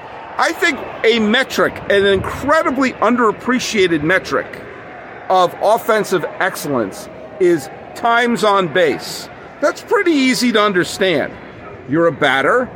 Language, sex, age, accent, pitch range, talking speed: English, male, 50-69, American, 140-215 Hz, 110 wpm